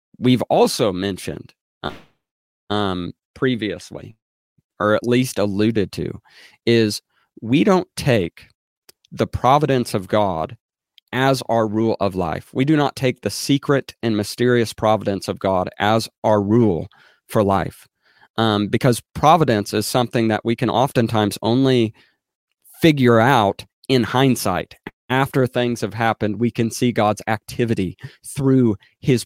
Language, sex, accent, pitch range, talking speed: English, male, American, 105-130 Hz, 130 wpm